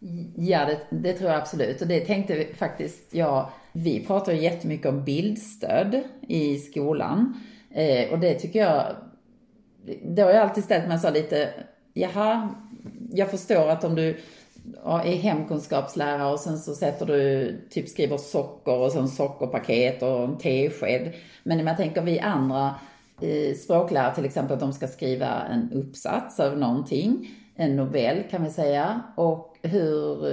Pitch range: 145-200 Hz